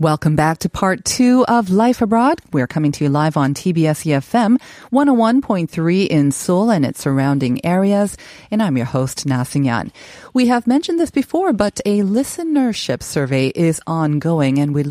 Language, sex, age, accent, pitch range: Korean, female, 40-59, American, 145-215 Hz